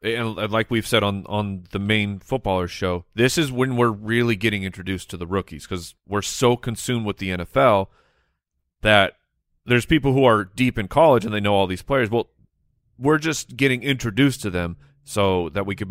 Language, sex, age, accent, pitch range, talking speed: English, male, 30-49, American, 100-135 Hz, 195 wpm